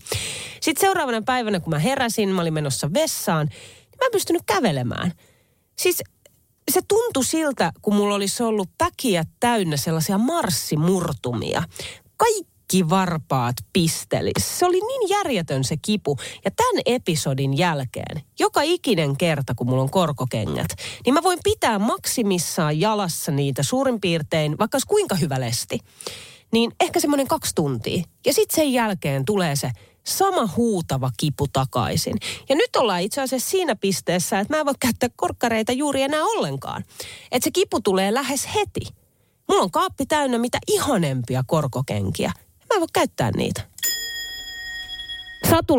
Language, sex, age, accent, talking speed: Finnish, female, 30-49, native, 145 wpm